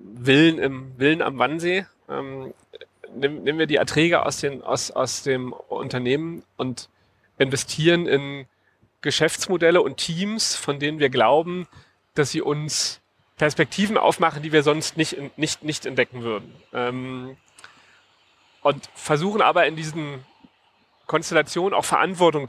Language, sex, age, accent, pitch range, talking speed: German, male, 40-59, German, 130-165 Hz, 125 wpm